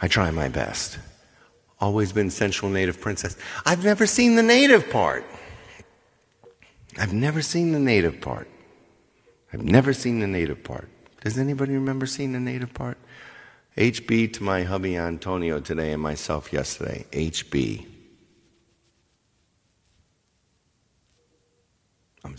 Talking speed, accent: 120 wpm, American